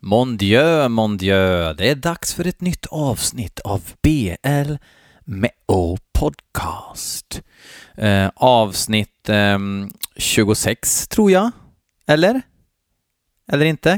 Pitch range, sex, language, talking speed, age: 95-125 Hz, male, Swedish, 95 wpm, 30-49